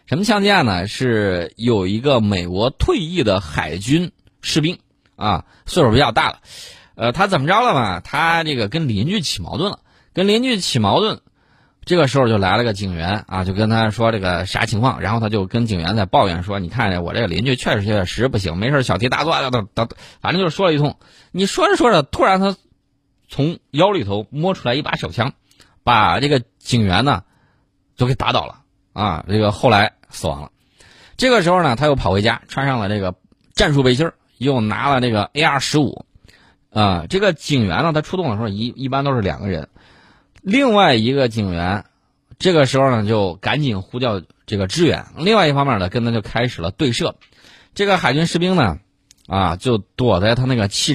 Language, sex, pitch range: Chinese, male, 100-145 Hz